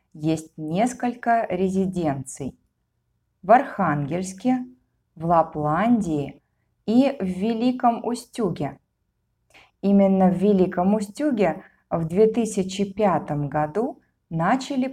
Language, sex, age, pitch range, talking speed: Russian, female, 20-39, 160-220 Hz, 75 wpm